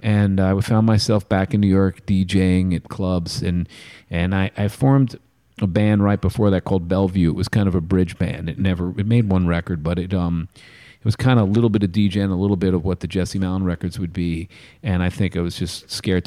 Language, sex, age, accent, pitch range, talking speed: English, male, 40-59, American, 95-115 Hz, 245 wpm